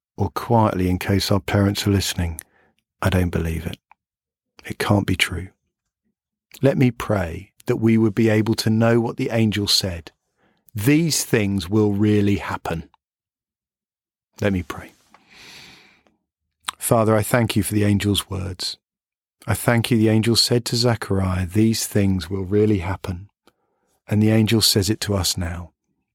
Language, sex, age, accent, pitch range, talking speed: English, male, 40-59, British, 95-115 Hz, 155 wpm